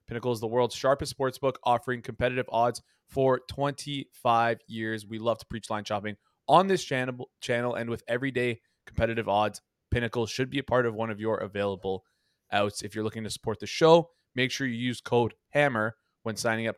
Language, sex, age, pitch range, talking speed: English, male, 20-39, 110-135 Hz, 195 wpm